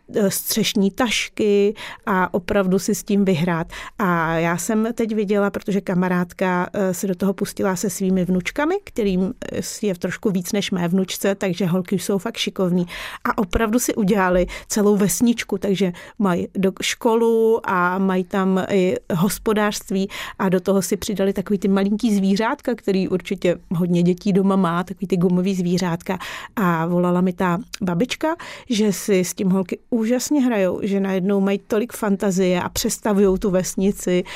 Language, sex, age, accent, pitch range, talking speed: Czech, female, 40-59, native, 185-210 Hz, 155 wpm